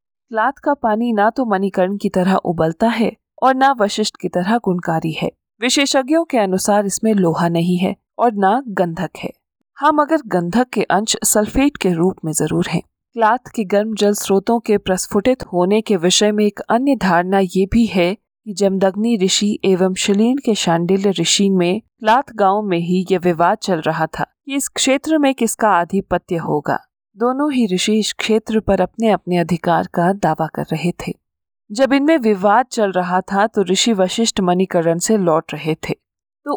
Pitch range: 180-230 Hz